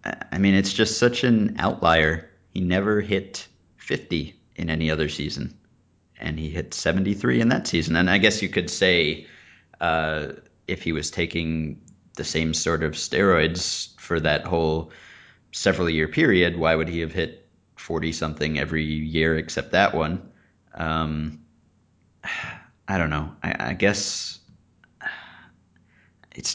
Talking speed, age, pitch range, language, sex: 140 wpm, 30-49, 80-100 Hz, English, male